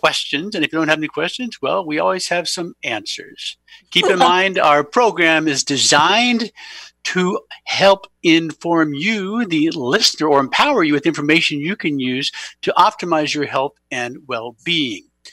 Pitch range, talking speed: 140-195 Hz, 160 wpm